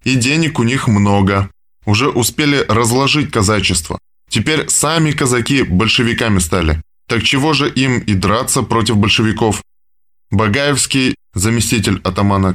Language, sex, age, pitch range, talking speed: Russian, male, 20-39, 90-125 Hz, 120 wpm